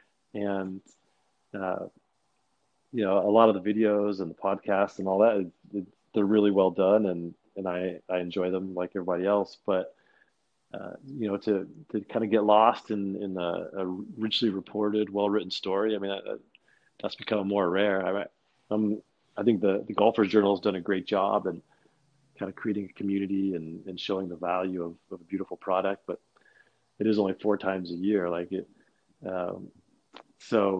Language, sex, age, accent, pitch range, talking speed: English, male, 30-49, American, 95-105 Hz, 180 wpm